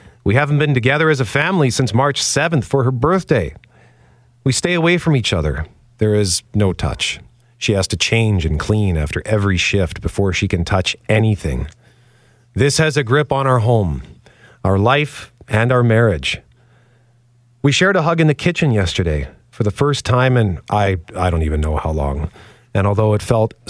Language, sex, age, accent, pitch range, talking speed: English, male, 40-59, American, 100-145 Hz, 185 wpm